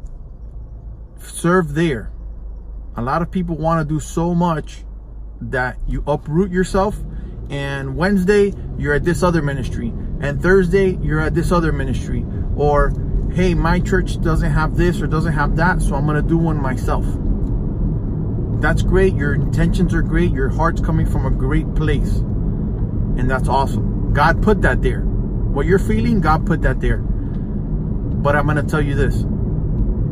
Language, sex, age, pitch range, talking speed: English, male, 30-49, 130-170 Hz, 160 wpm